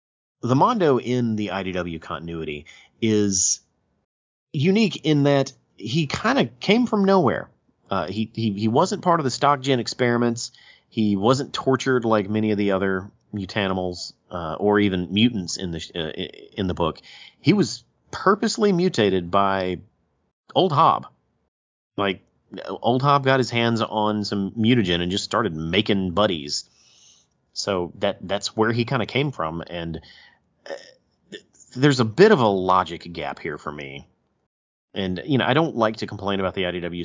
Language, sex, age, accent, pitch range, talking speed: English, male, 30-49, American, 90-120 Hz, 160 wpm